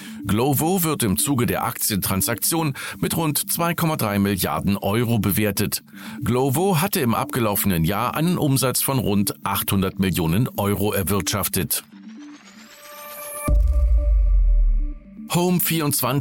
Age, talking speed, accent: 50-69, 95 wpm, German